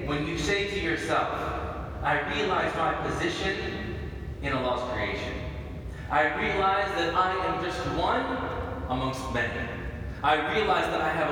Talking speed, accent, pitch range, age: 145 wpm, American, 105-155 Hz, 30-49